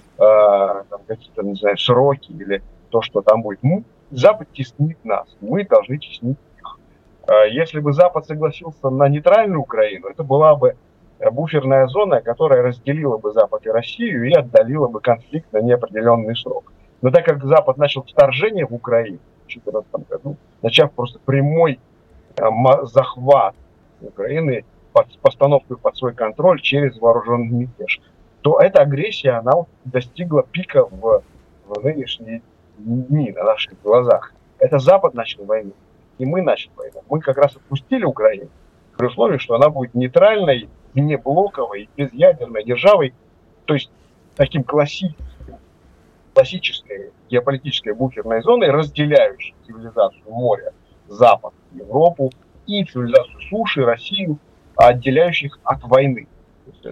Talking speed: 130 wpm